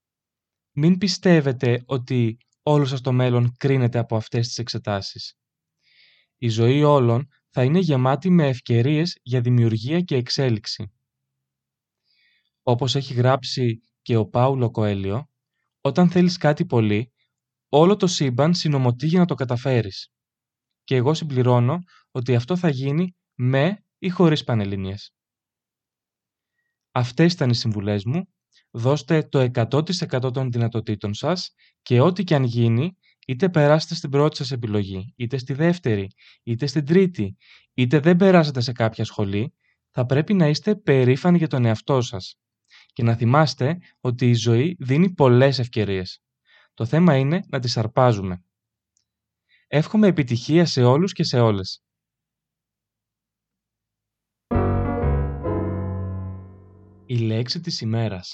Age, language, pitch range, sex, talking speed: 20-39, Greek, 115-150 Hz, male, 125 wpm